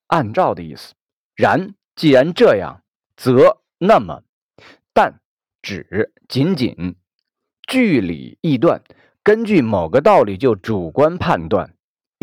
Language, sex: Chinese, male